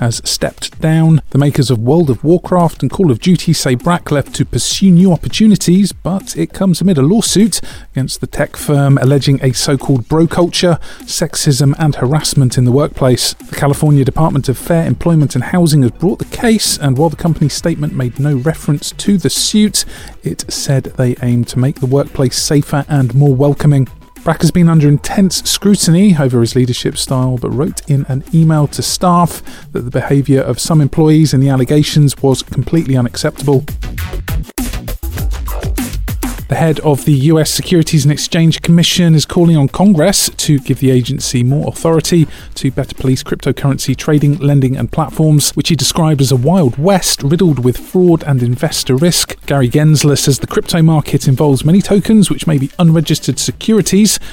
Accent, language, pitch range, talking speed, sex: British, English, 135-165 Hz, 175 wpm, male